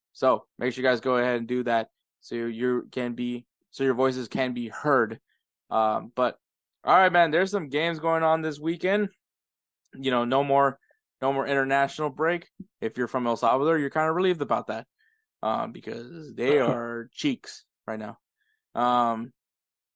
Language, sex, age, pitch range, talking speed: English, male, 20-39, 125-160 Hz, 175 wpm